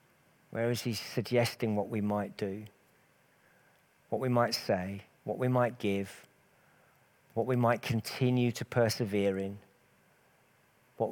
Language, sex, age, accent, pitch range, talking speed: English, male, 50-69, British, 100-125 Hz, 130 wpm